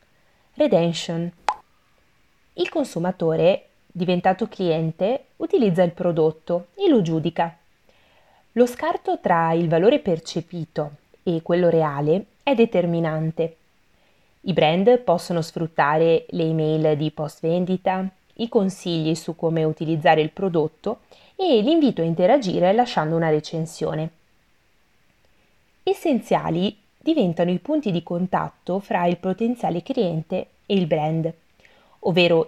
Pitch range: 165-215 Hz